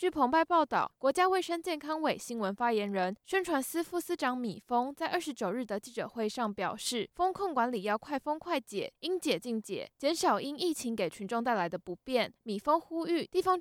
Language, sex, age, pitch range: Chinese, female, 10-29, 220-305 Hz